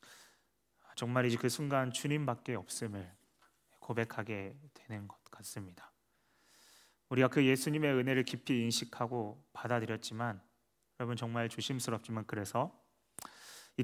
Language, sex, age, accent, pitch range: Korean, male, 30-49, native, 115-135 Hz